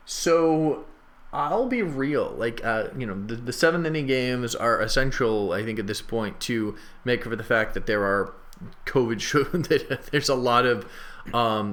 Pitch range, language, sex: 105-140 Hz, English, male